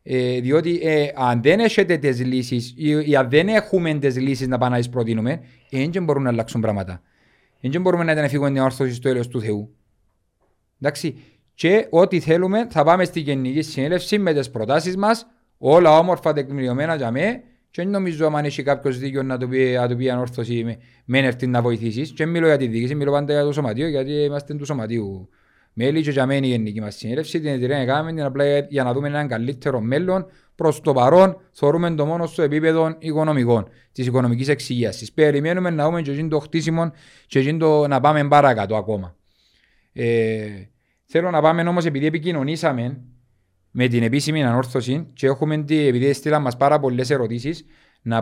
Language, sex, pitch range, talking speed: Greek, male, 125-155 Hz, 100 wpm